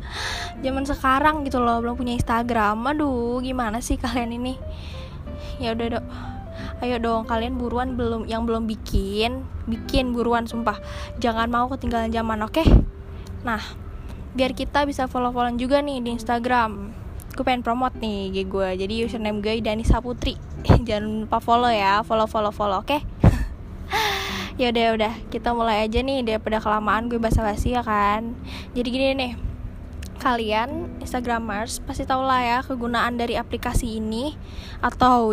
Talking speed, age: 150 wpm, 10-29